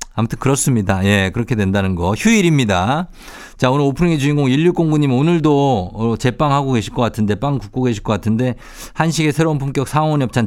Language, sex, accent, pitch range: Korean, male, native, 105-145 Hz